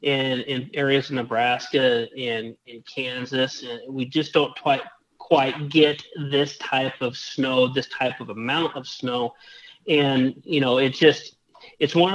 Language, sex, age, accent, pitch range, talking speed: English, male, 30-49, American, 130-155 Hz, 160 wpm